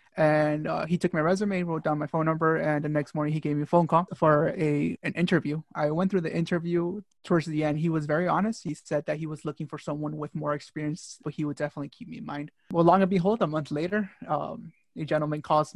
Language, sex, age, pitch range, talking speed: English, male, 20-39, 150-165 Hz, 255 wpm